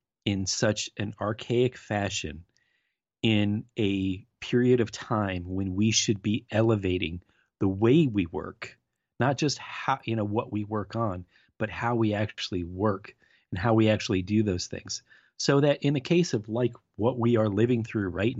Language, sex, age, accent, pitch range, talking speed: English, male, 30-49, American, 100-120 Hz, 175 wpm